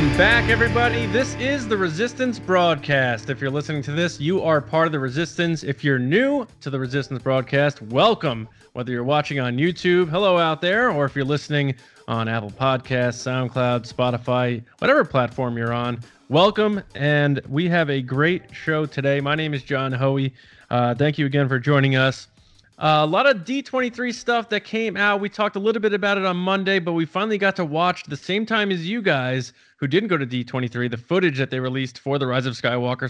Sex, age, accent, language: male, 20-39, American, English